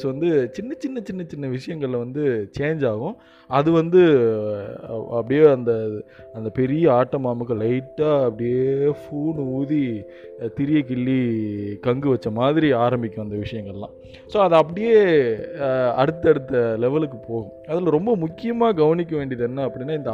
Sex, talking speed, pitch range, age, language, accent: male, 130 wpm, 125-165 Hz, 20-39, Tamil, native